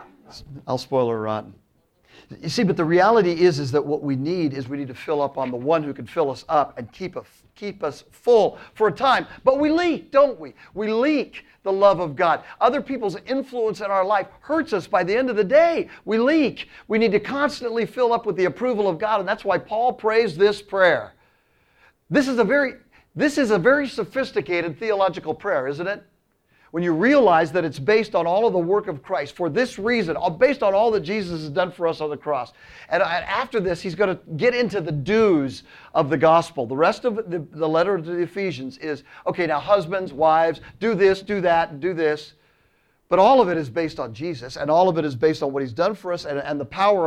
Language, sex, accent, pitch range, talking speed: English, male, American, 160-220 Hz, 230 wpm